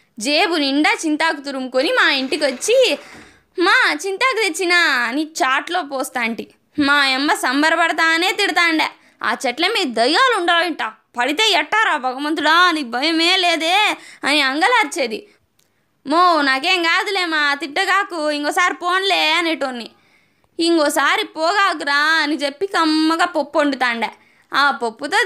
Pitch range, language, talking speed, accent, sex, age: 275-360 Hz, Telugu, 110 wpm, native, female, 20-39